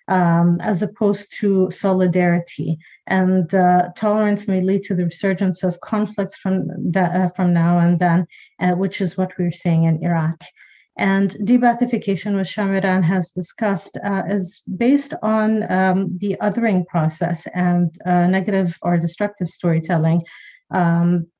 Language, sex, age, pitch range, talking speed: English, female, 40-59, 175-200 Hz, 145 wpm